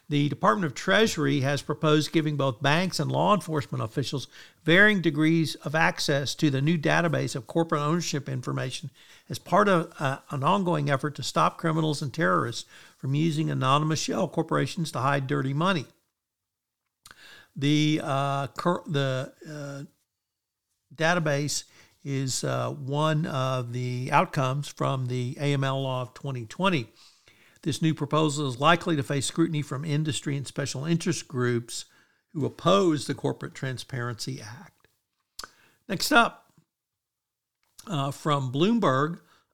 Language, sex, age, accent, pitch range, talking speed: English, male, 60-79, American, 135-165 Hz, 135 wpm